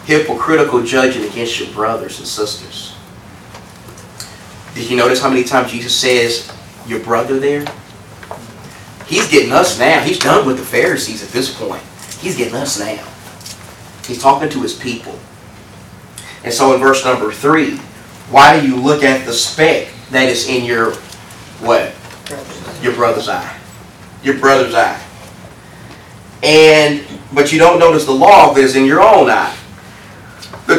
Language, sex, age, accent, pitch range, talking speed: English, male, 30-49, American, 120-145 Hz, 150 wpm